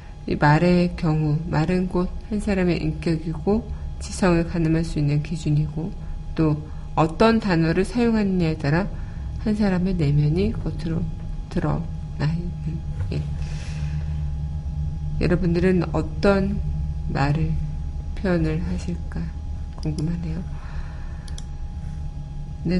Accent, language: native, Korean